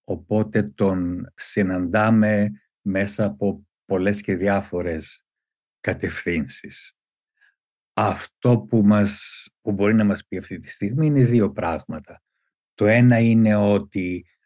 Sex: male